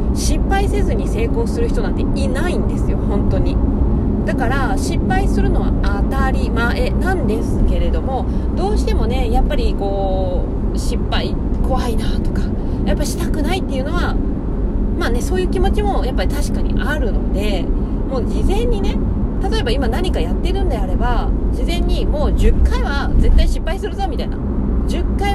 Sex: female